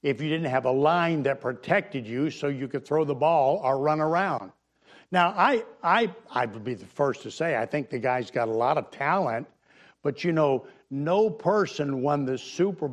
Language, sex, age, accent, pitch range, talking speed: English, male, 60-79, American, 130-195 Hz, 210 wpm